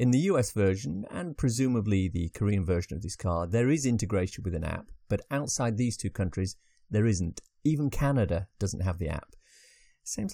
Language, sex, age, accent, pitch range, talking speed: English, male, 40-59, British, 95-135 Hz, 185 wpm